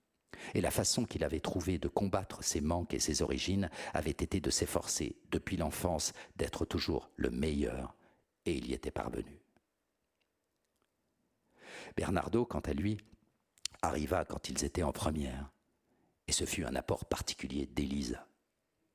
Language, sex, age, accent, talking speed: French, male, 60-79, French, 145 wpm